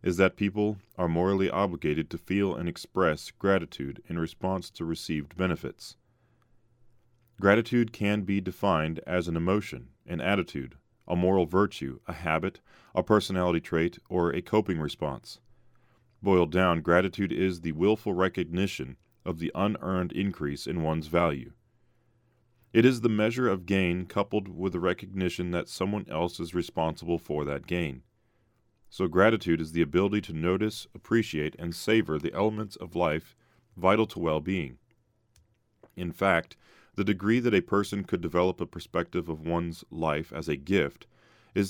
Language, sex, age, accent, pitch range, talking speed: English, male, 30-49, American, 85-105 Hz, 150 wpm